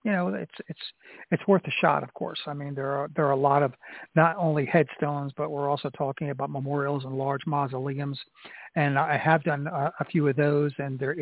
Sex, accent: male, American